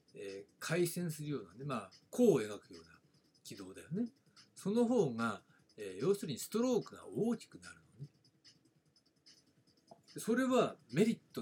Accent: native